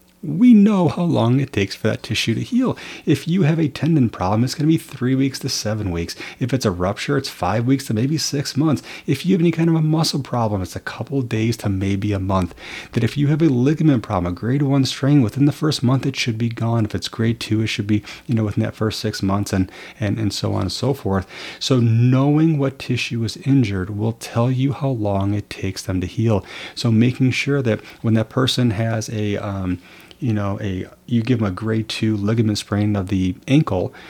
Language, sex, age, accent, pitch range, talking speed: English, male, 30-49, American, 100-135 Hz, 240 wpm